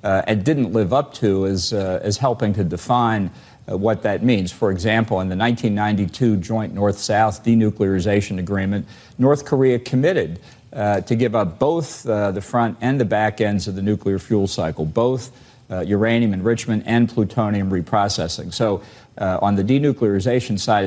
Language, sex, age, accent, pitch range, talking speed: English, male, 50-69, American, 100-115 Hz, 165 wpm